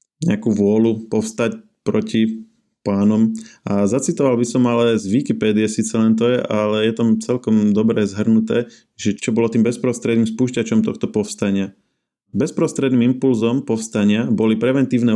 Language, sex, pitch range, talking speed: Slovak, male, 105-120 Hz, 140 wpm